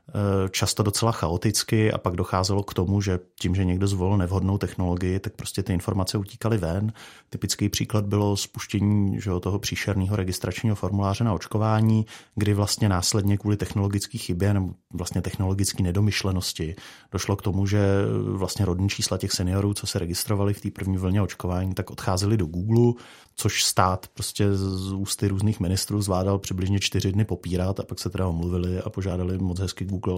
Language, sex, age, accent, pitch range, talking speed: Czech, male, 30-49, native, 95-110 Hz, 170 wpm